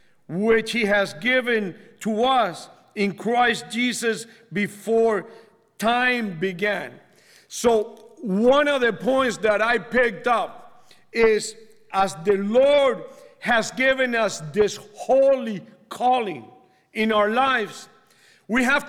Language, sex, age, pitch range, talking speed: English, male, 50-69, 215-265 Hz, 115 wpm